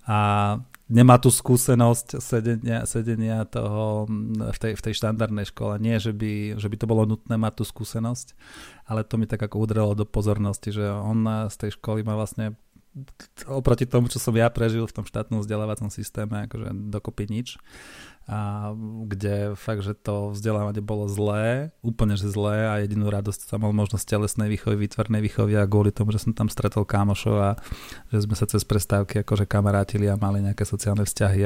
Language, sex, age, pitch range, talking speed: Slovak, male, 30-49, 105-115 Hz, 180 wpm